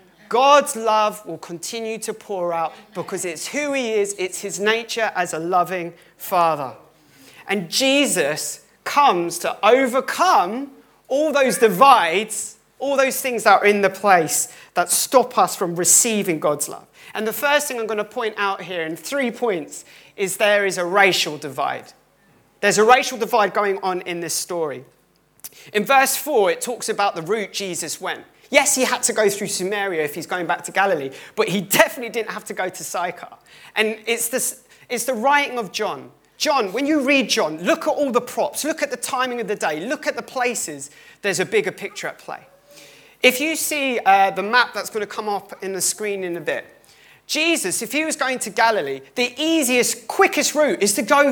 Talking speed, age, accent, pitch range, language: 195 wpm, 40-59, British, 190-265 Hz, English